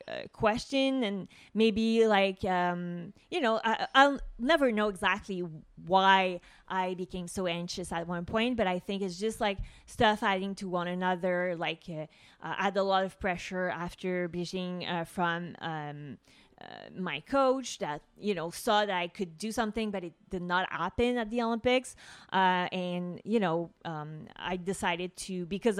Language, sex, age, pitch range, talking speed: English, female, 20-39, 175-215 Hz, 170 wpm